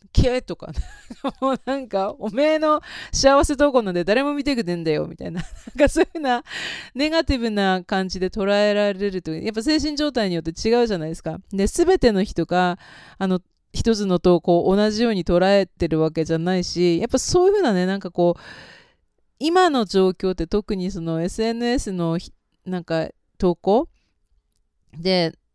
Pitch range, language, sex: 175-240 Hz, Japanese, female